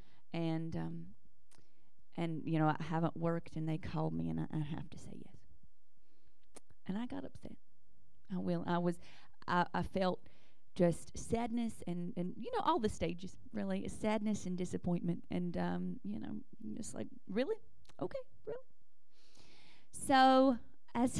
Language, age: English, 30-49